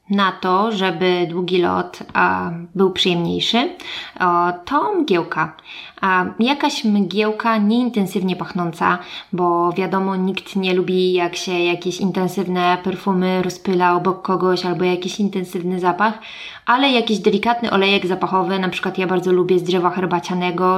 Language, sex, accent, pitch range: Polish, female, native, 180-195 Hz